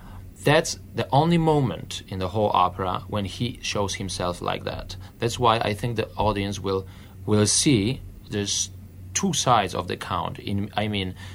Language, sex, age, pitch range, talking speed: English, male, 30-49, 95-120 Hz, 170 wpm